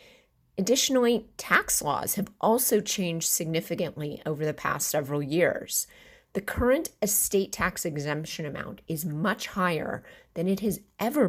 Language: English